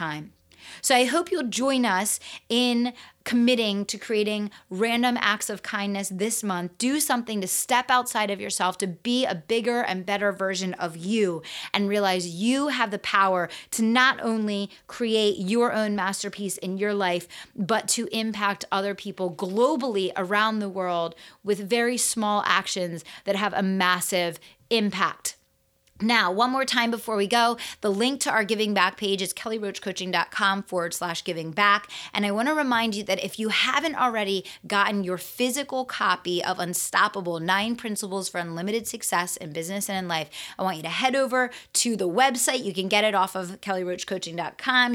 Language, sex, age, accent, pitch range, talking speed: English, female, 30-49, American, 190-235 Hz, 170 wpm